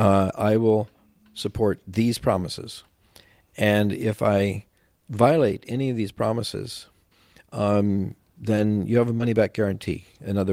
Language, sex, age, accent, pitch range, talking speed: English, male, 50-69, American, 95-110 Hz, 130 wpm